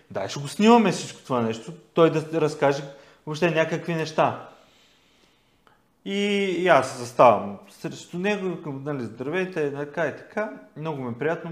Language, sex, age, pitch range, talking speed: Bulgarian, male, 30-49, 135-170 Hz, 155 wpm